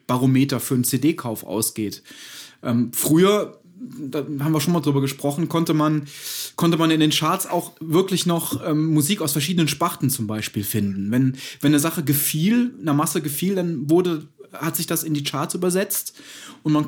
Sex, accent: male, German